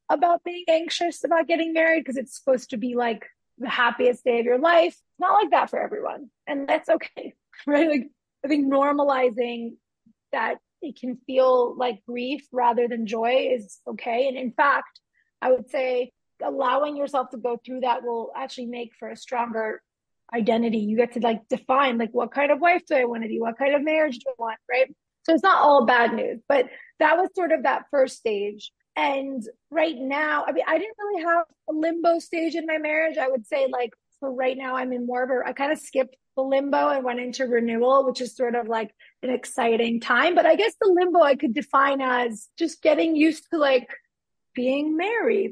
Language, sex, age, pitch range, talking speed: English, female, 20-39, 245-310 Hz, 210 wpm